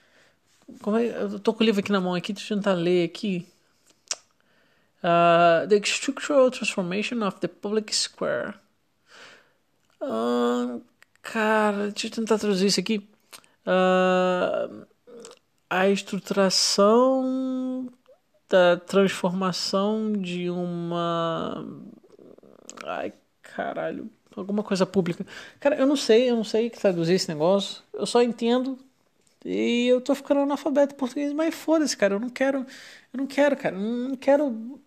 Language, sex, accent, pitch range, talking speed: Portuguese, male, Brazilian, 195-260 Hz, 120 wpm